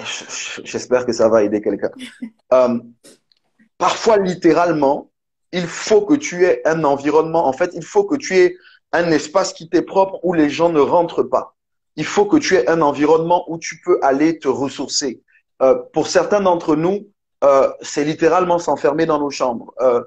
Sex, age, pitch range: male, 30-49, 140-185 Hz